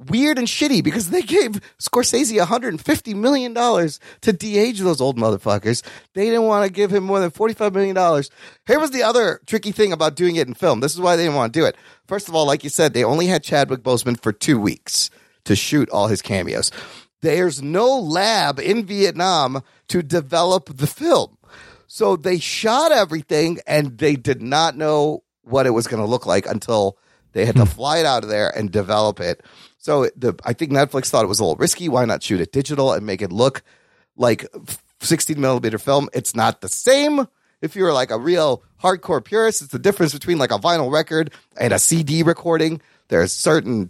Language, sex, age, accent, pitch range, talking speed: English, male, 30-49, American, 130-195 Hz, 205 wpm